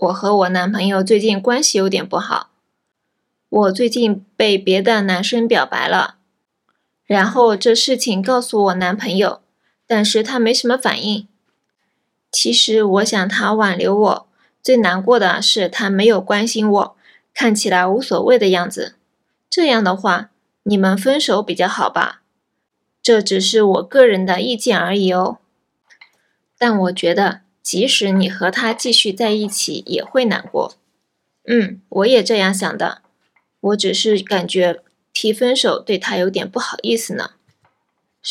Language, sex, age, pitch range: Japanese, female, 20-39, 195-235 Hz